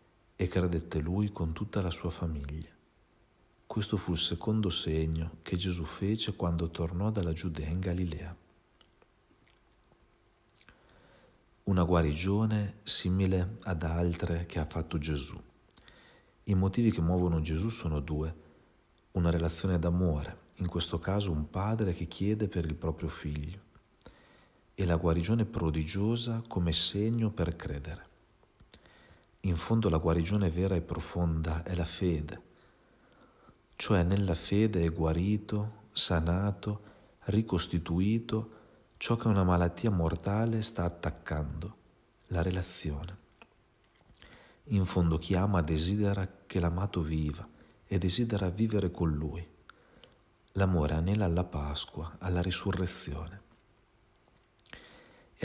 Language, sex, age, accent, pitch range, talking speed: Italian, male, 40-59, native, 80-100 Hz, 115 wpm